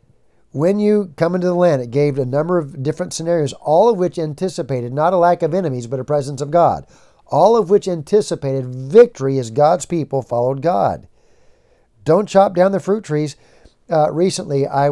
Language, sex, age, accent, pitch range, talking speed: English, male, 50-69, American, 125-155 Hz, 185 wpm